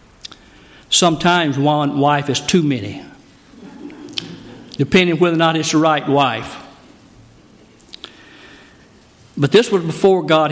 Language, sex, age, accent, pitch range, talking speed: English, male, 60-79, American, 135-170 Hz, 115 wpm